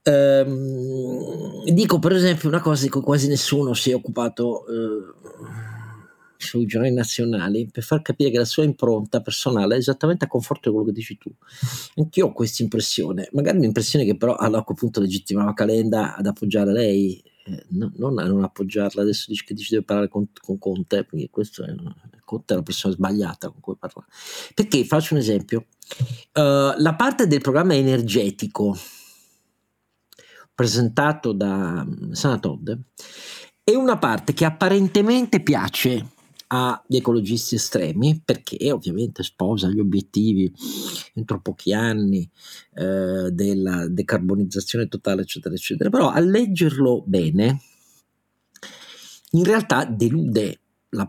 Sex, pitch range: male, 105-145 Hz